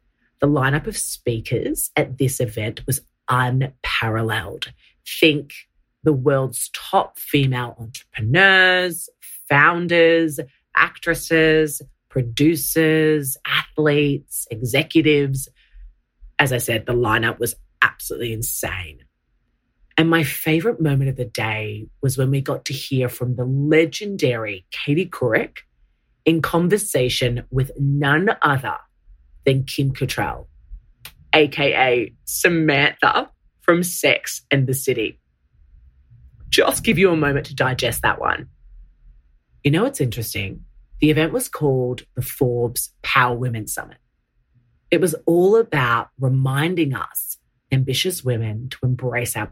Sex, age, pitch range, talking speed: female, 30-49, 115-150 Hz, 115 wpm